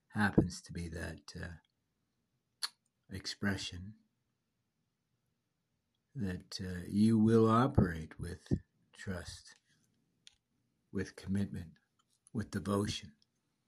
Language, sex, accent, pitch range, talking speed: English, male, American, 95-120 Hz, 75 wpm